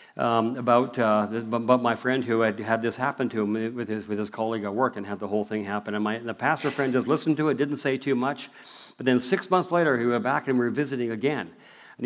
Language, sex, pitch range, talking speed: English, male, 110-130 Hz, 280 wpm